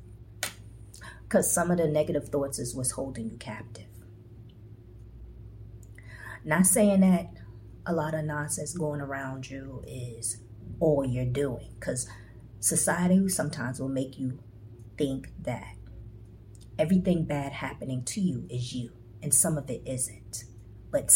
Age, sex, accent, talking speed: 40-59, female, American, 130 wpm